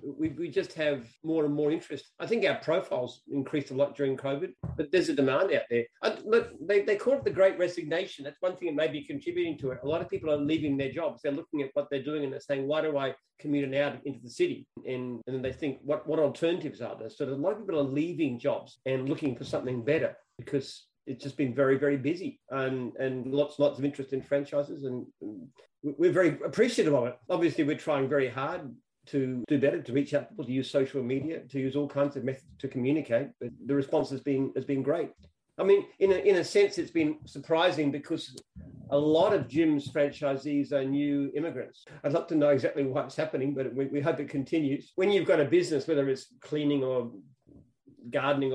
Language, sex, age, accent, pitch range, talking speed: English, male, 40-59, Australian, 135-160 Hz, 230 wpm